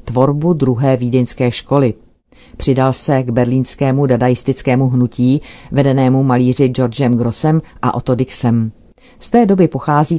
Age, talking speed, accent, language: 40-59, 125 wpm, native, Czech